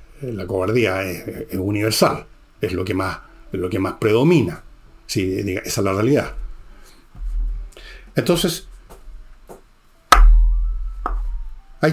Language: Spanish